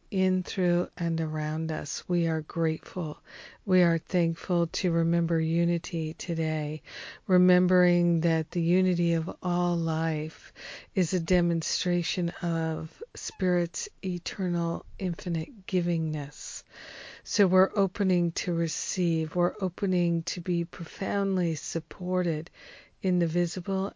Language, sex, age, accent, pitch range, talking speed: English, female, 50-69, American, 165-185 Hz, 110 wpm